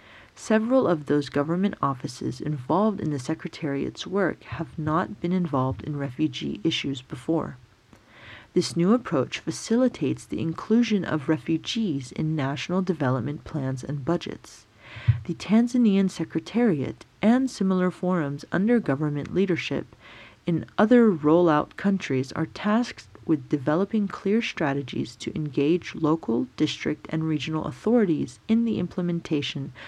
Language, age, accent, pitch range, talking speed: English, 40-59, American, 140-195 Hz, 125 wpm